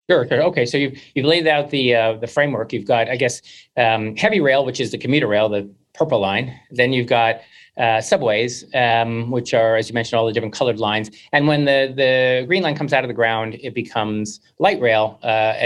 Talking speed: 225 wpm